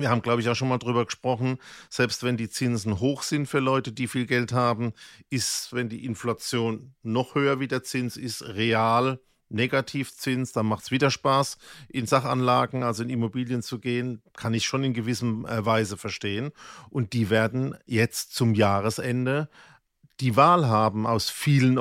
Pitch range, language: 115-135 Hz, German